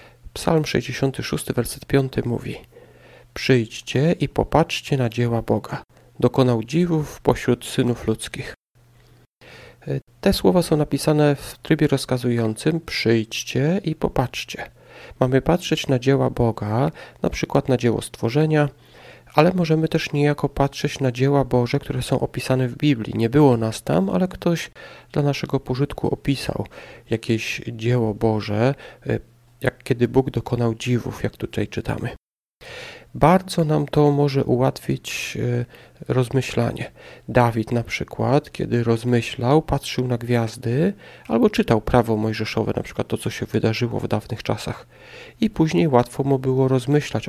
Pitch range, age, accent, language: 120-145 Hz, 40-59, native, Polish